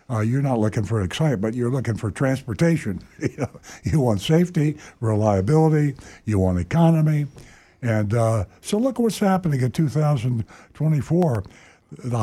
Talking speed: 135 wpm